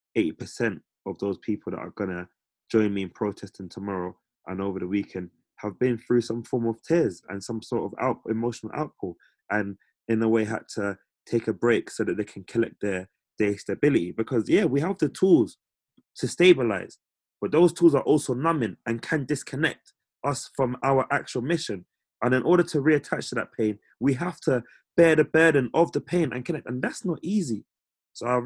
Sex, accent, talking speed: male, British, 195 wpm